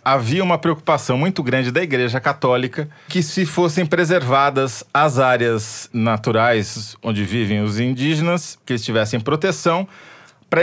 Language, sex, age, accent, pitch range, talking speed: Portuguese, male, 40-59, Brazilian, 115-160 Hz, 130 wpm